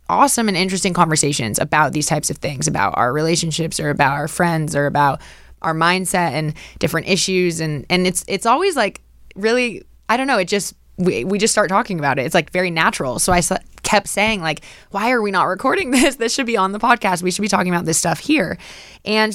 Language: English